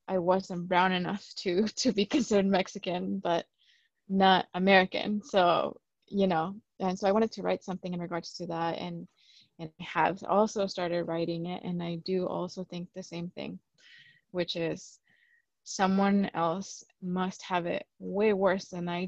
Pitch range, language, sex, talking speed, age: 175-200 Hz, English, female, 165 wpm, 20-39